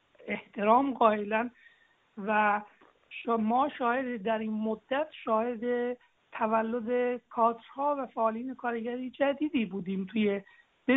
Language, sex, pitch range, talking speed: English, male, 215-255 Hz, 100 wpm